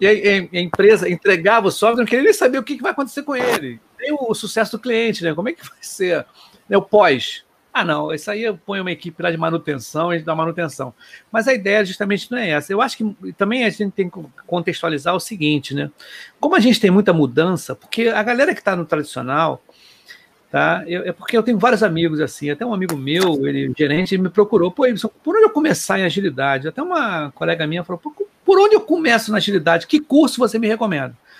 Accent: Brazilian